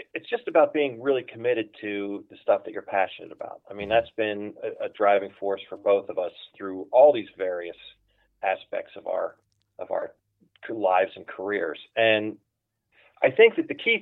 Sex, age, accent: male, 30-49, American